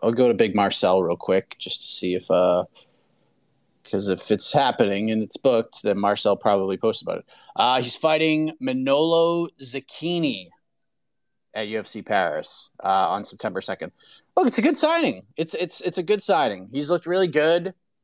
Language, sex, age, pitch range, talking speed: English, male, 30-49, 135-195 Hz, 175 wpm